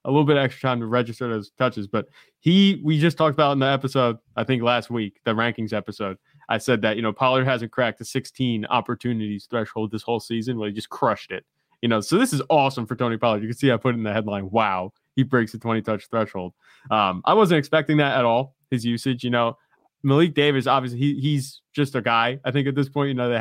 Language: English